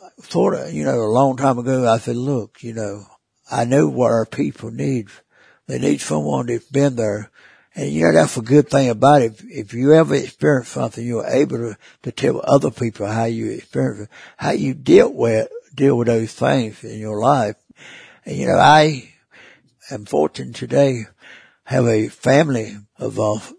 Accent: American